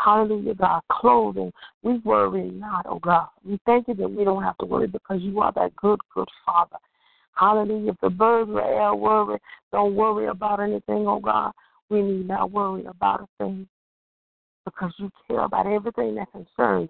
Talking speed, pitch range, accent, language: 180 wpm, 175-215 Hz, American, English